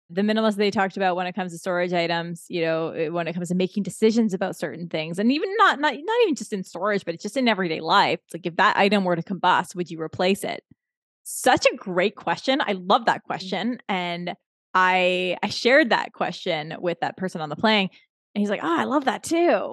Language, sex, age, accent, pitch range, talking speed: English, female, 20-39, American, 185-250 Hz, 230 wpm